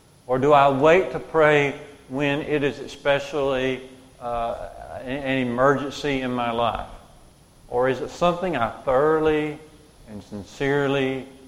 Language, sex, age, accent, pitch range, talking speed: English, male, 40-59, American, 120-145 Hz, 125 wpm